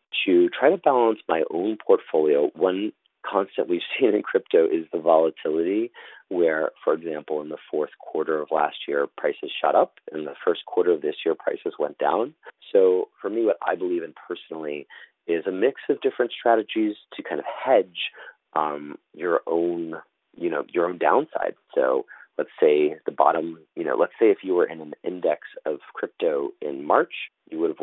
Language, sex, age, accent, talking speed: English, male, 40-59, American, 190 wpm